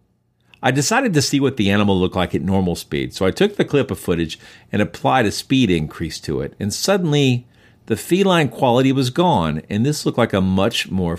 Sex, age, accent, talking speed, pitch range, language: male, 50-69, American, 215 wpm, 85-125 Hz, English